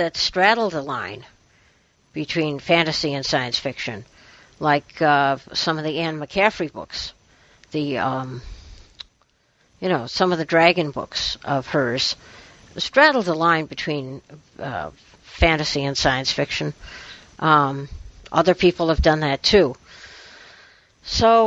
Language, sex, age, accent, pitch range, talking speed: English, female, 60-79, American, 150-210 Hz, 125 wpm